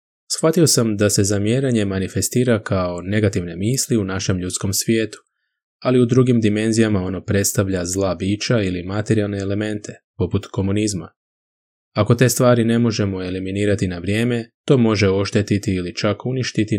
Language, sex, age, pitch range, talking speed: Croatian, male, 20-39, 95-115 Hz, 145 wpm